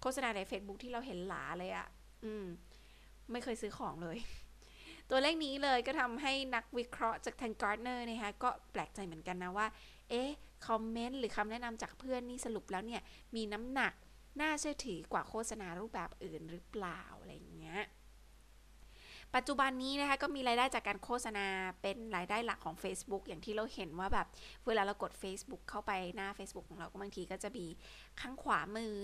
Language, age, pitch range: Thai, 20-39, 195-245 Hz